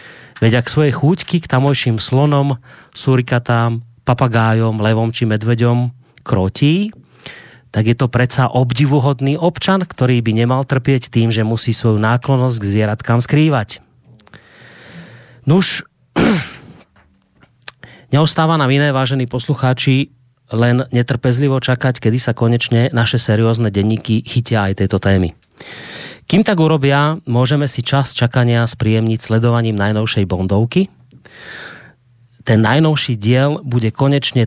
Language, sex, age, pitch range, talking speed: Slovak, male, 30-49, 110-135 Hz, 115 wpm